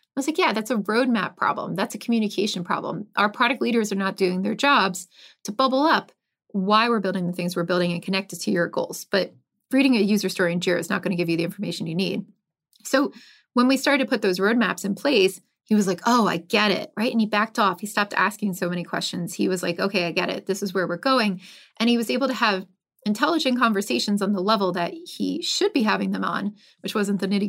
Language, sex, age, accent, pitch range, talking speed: English, female, 30-49, American, 190-240 Hz, 250 wpm